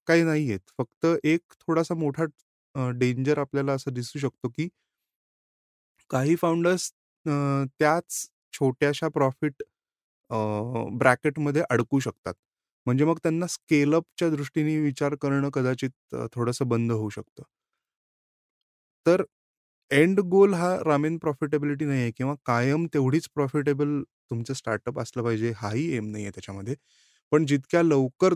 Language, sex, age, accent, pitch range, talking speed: Marathi, male, 20-39, native, 115-150 Hz, 70 wpm